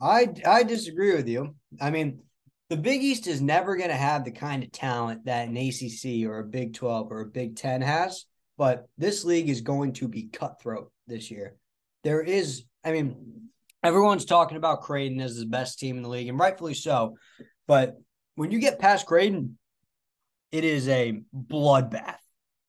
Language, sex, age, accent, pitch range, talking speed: English, male, 20-39, American, 120-150 Hz, 180 wpm